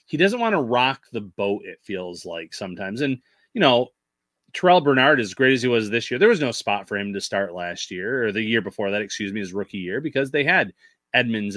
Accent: American